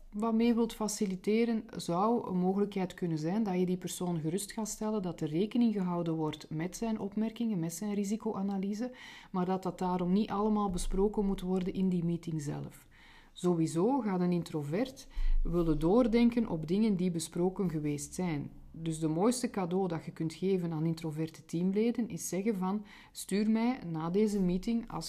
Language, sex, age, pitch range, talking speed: Dutch, female, 40-59, 165-210 Hz, 170 wpm